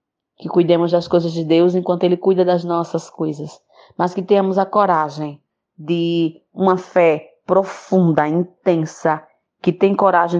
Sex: female